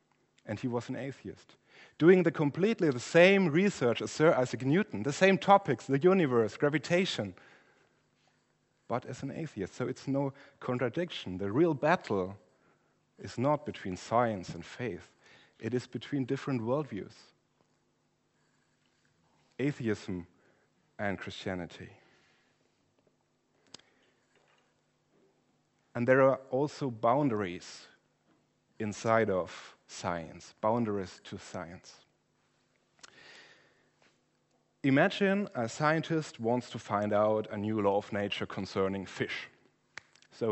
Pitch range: 105-150 Hz